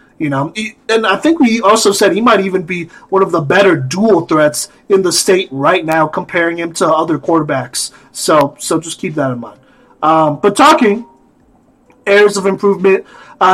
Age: 30-49